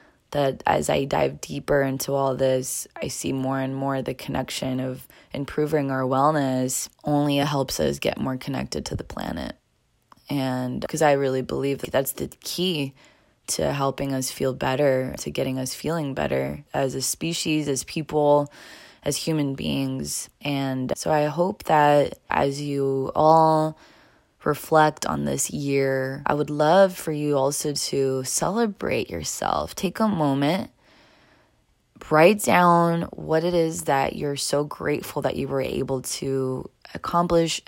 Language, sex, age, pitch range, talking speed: English, female, 20-39, 135-170 Hz, 150 wpm